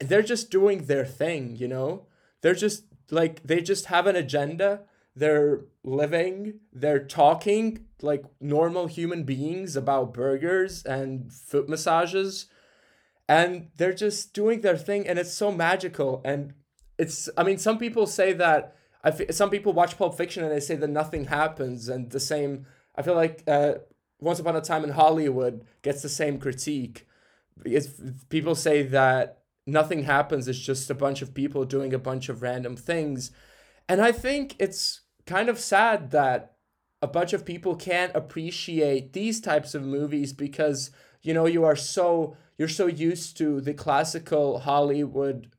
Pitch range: 135-175 Hz